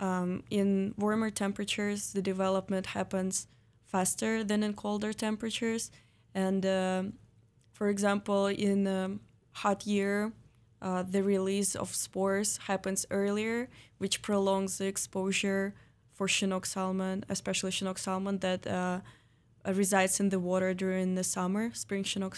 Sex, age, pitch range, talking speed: female, 20-39, 180-200 Hz, 130 wpm